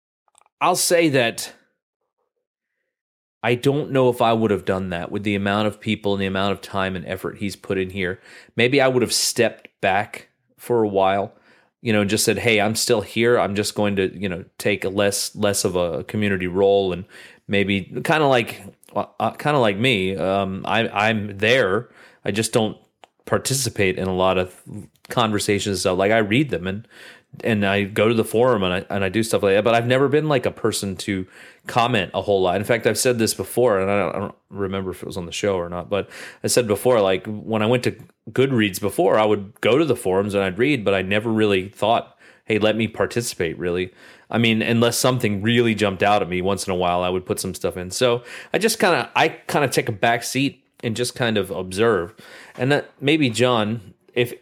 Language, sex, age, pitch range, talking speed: English, male, 30-49, 95-120 Hz, 230 wpm